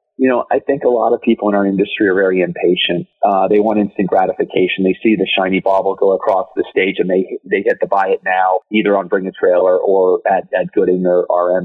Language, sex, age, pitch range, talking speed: English, male, 40-59, 95-120 Hz, 240 wpm